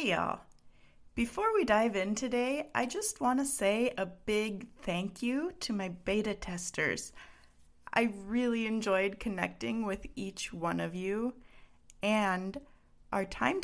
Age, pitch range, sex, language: 30-49, 180-225 Hz, female, English